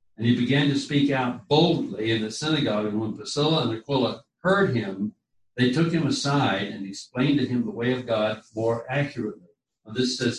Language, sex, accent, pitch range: English, male, American, 110-145 Hz